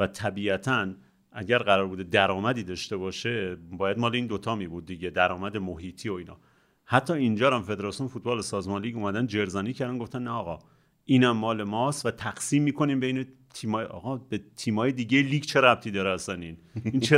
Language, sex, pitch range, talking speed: Persian, male, 100-130 Hz, 180 wpm